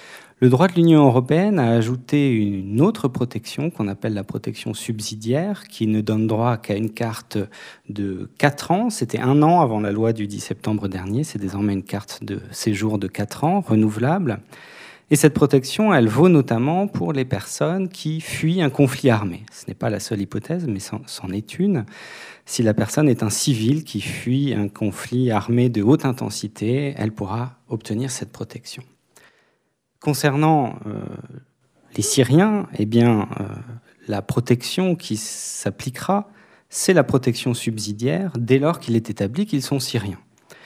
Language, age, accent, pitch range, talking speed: French, 40-59, French, 110-145 Hz, 165 wpm